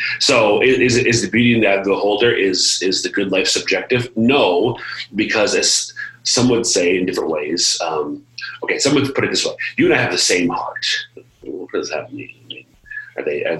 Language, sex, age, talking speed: English, male, 40-59, 200 wpm